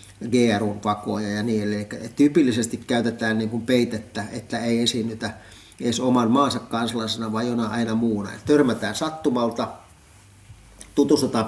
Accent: native